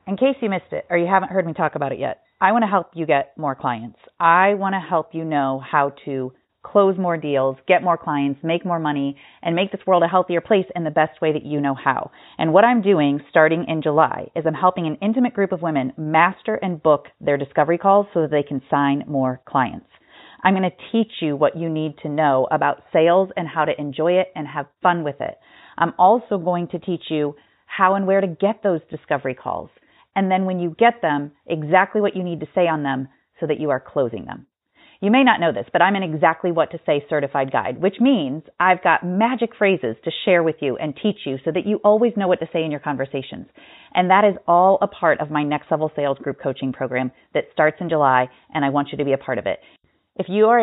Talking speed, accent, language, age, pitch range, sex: 245 wpm, American, English, 30-49, 145-190 Hz, female